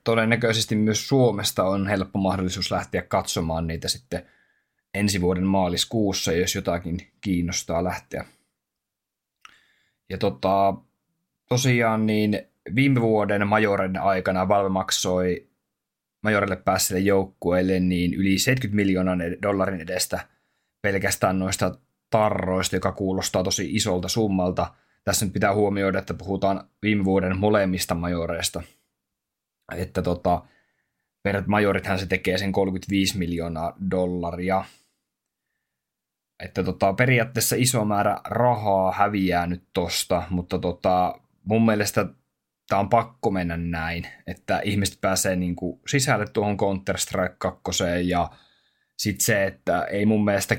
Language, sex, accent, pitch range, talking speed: Finnish, male, native, 90-105 Hz, 115 wpm